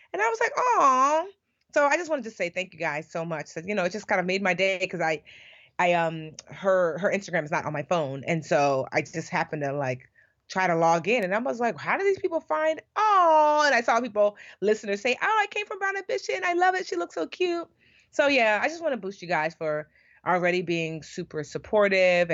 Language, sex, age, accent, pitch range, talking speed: English, female, 30-49, American, 145-195 Hz, 245 wpm